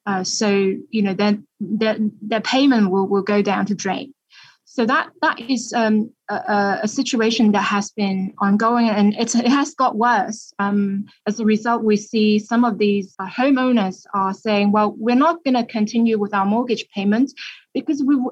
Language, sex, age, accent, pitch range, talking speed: English, female, 20-39, British, 210-255 Hz, 185 wpm